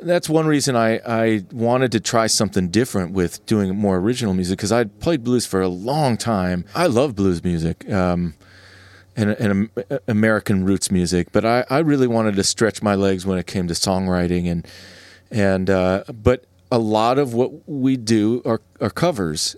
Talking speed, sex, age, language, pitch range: 185 wpm, male, 40-59, English, 95-125 Hz